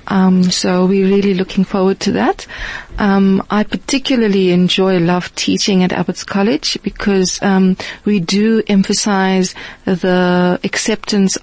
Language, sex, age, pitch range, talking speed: English, female, 30-49, 180-205 Hz, 125 wpm